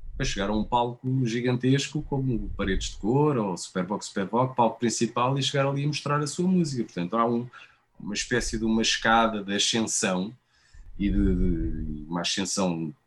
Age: 20-39